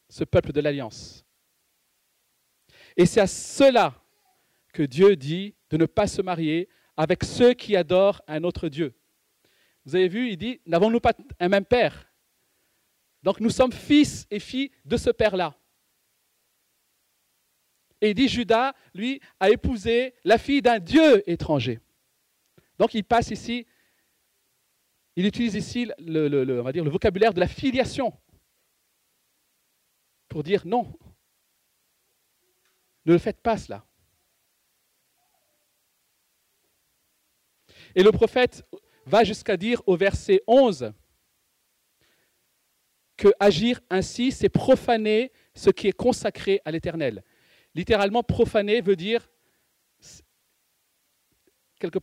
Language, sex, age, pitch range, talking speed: French, male, 40-59, 170-240 Hz, 120 wpm